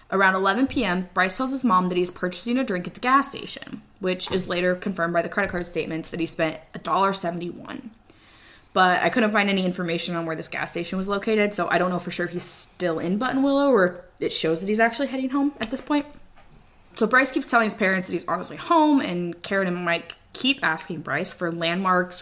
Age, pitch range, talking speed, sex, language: 20-39, 175-230 Hz, 225 wpm, female, English